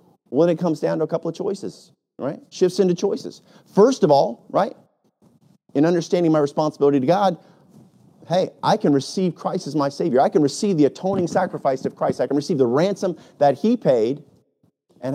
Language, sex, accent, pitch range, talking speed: English, male, American, 155-195 Hz, 195 wpm